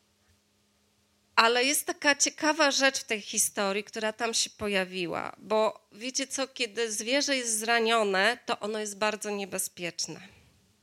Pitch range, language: 220-265 Hz, Polish